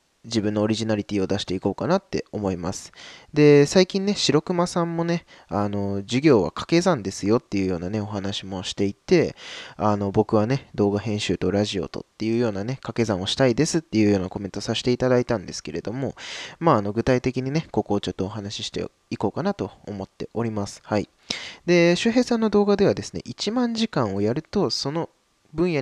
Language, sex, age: Japanese, male, 20-39